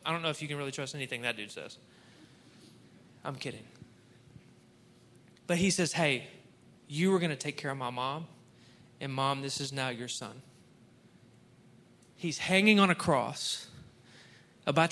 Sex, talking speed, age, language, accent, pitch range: male, 160 wpm, 20-39, English, American, 125-170 Hz